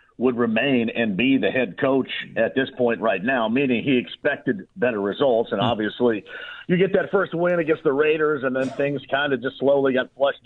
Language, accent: English, American